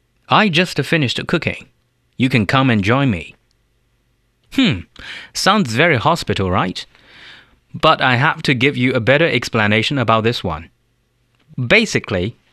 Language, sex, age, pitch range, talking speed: English, male, 30-49, 110-145 Hz, 135 wpm